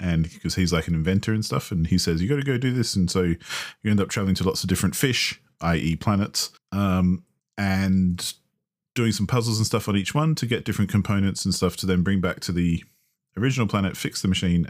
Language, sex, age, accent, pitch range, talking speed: English, male, 30-49, Australian, 85-100 Hz, 235 wpm